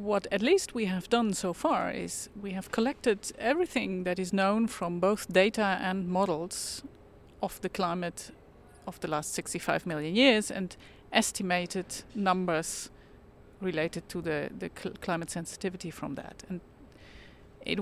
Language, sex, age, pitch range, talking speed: English, female, 40-59, 180-220 Hz, 150 wpm